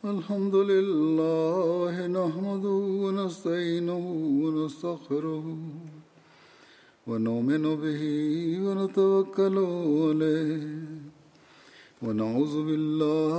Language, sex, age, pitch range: Urdu, male, 50-69, 155-195 Hz